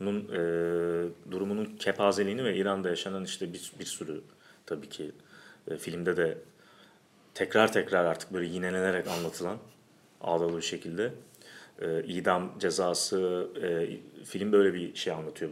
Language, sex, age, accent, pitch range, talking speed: Turkish, male, 40-59, native, 85-125 Hz, 130 wpm